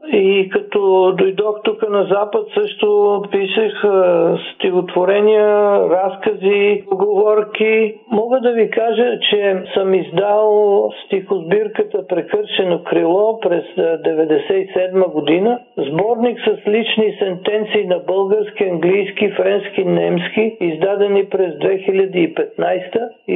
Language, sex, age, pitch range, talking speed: Bulgarian, male, 50-69, 190-230 Hz, 90 wpm